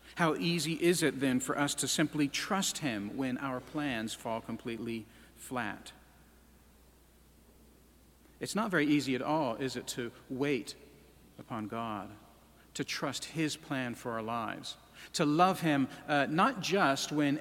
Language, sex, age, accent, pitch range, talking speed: English, male, 50-69, American, 105-140 Hz, 150 wpm